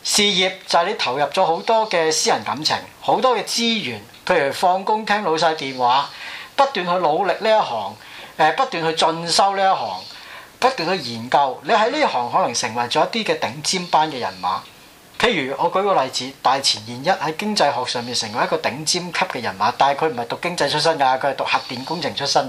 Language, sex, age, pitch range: Chinese, male, 40-59, 130-190 Hz